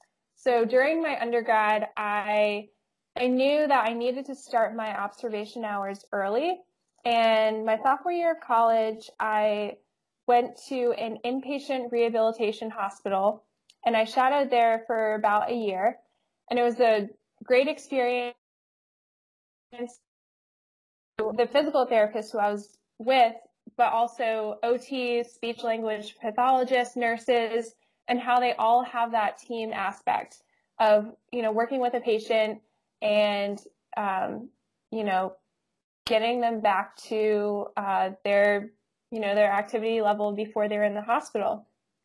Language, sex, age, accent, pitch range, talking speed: English, female, 10-29, American, 215-240 Hz, 130 wpm